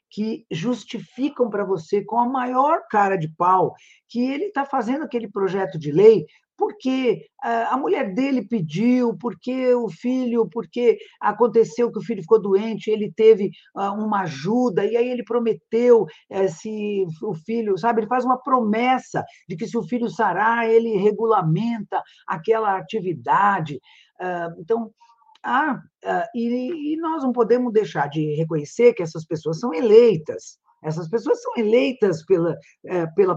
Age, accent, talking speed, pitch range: 50-69, Brazilian, 140 wpm, 175-235 Hz